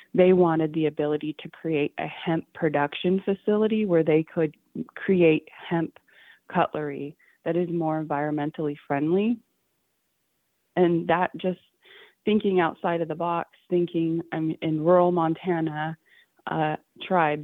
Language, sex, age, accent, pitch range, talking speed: English, female, 20-39, American, 155-170 Hz, 125 wpm